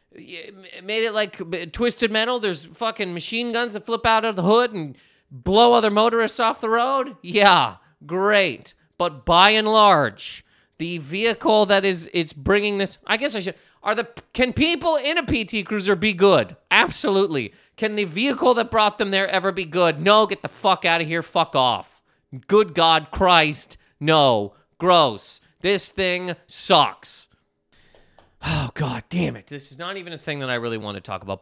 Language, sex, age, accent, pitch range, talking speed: English, male, 30-49, American, 135-215 Hz, 180 wpm